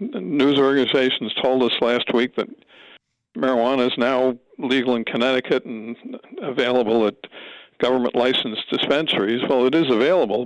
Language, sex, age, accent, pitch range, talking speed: English, male, 60-79, American, 120-135 Hz, 130 wpm